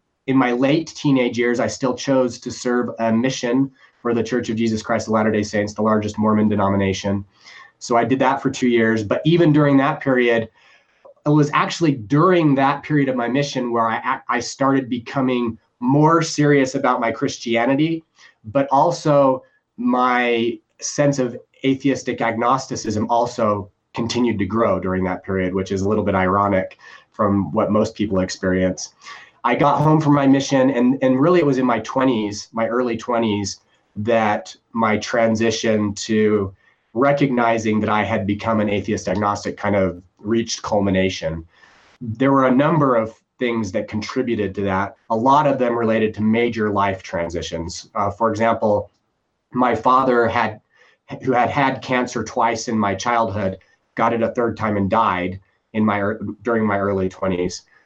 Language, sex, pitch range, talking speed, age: English, male, 105-130 Hz, 165 wpm, 30-49